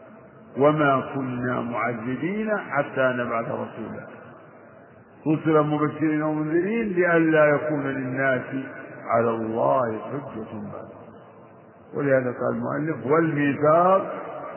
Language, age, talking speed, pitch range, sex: Arabic, 50-69, 80 wpm, 125-160 Hz, male